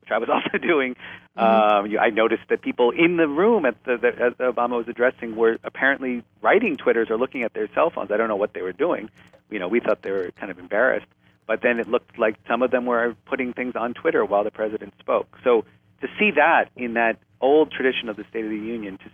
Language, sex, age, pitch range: English, male, 40-59, 100-120 Hz